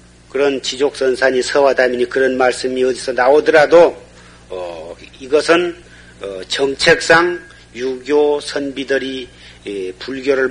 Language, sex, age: Korean, male, 40-59